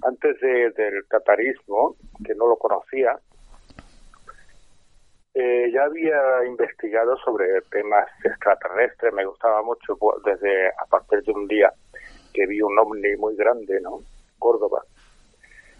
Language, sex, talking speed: Spanish, male, 120 wpm